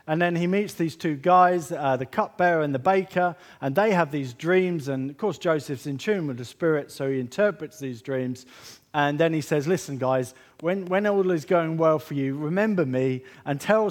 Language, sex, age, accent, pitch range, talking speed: English, male, 40-59, British, 135-180 Hz, 215 wpm